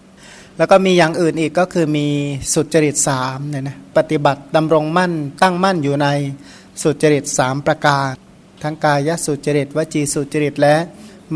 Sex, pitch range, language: male, 145-170 Hz, Thai